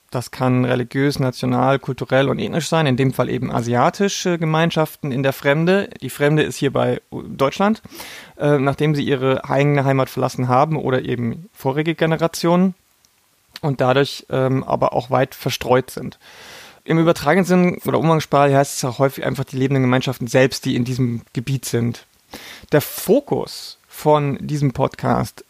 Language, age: German, 30-49